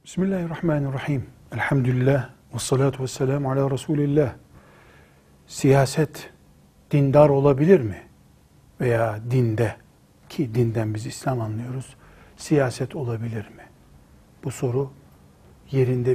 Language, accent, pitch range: Turkish, native, 95-155 Hz